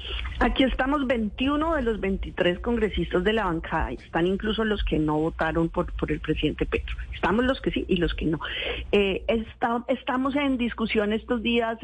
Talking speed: 180 wpm